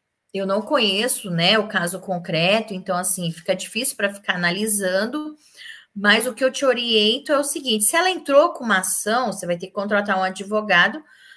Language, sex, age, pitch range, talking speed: Portuguese, female, 20-39, 190-235 Hz, 190 wpm